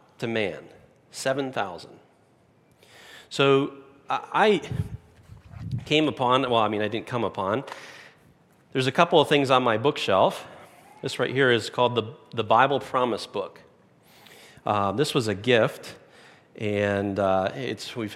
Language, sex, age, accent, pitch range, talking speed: English, male, 40-59, American, 110-140 Hz, 135 wpm